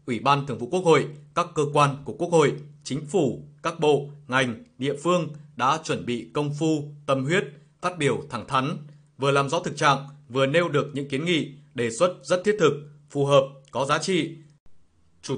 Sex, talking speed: male, 205 wpm